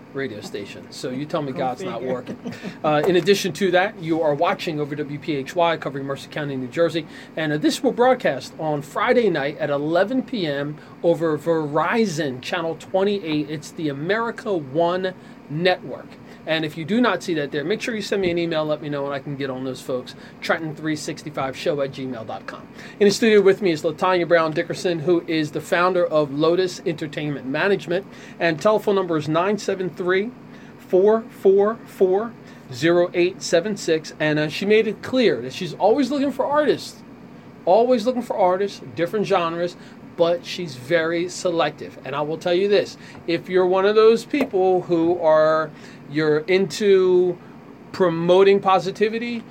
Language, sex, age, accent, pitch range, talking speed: English, male, 30-49, American, 155-200 Hz, 165 wpm